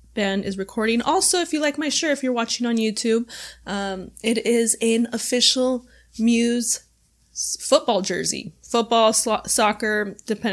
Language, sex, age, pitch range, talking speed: English, female, 20-39, 195-245 Hz, 150 wpm